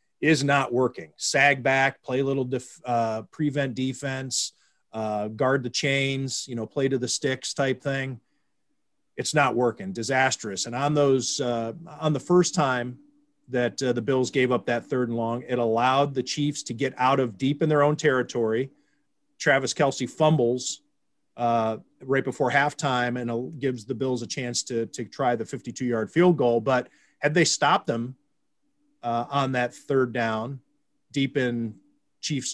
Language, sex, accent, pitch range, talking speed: English, male, American, 120-145 Hz, 170 wpm